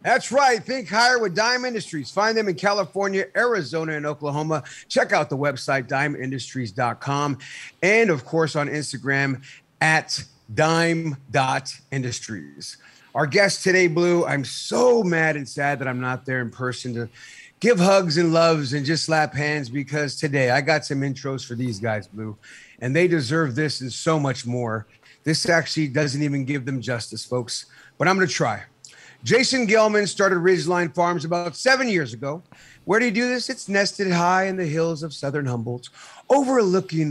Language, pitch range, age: English, 135-190 Hz, 40-59